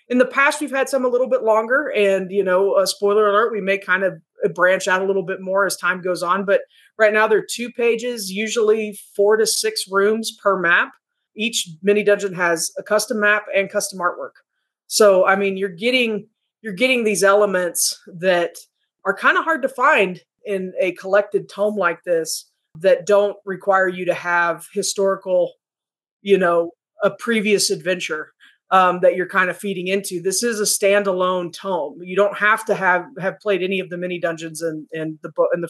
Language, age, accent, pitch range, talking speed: English, 20-39, American, 180-210 Hz, 200 wpm